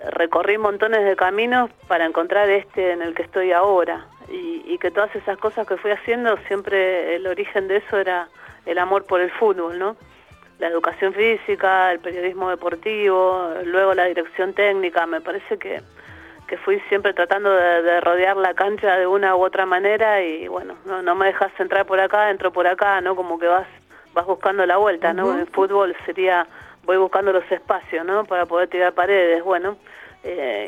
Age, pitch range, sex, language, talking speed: 40-59, 180-205 Hz, female, Spanish, 185 wpm